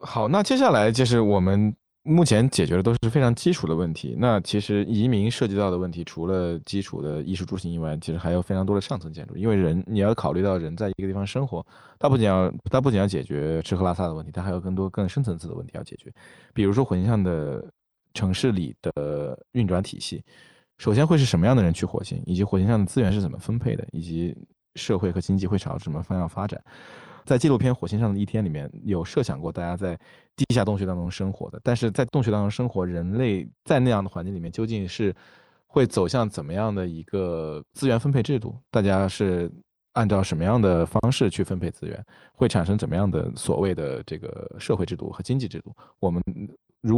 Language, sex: Chinese, male